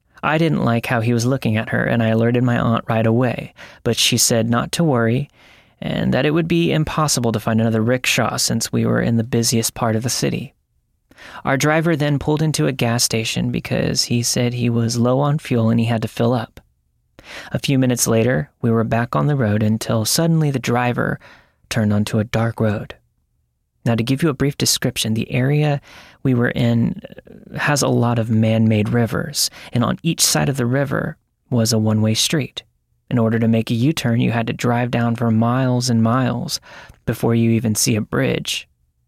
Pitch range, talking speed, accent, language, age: 115-130 Hz, 205 wpm, American, English, 30-49